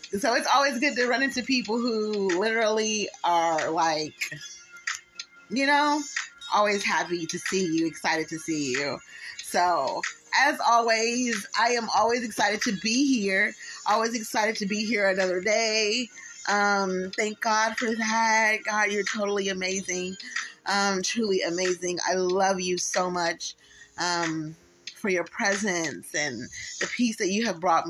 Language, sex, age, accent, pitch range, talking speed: English, female, 30-49, American, 175-225 Hz, 145 wpm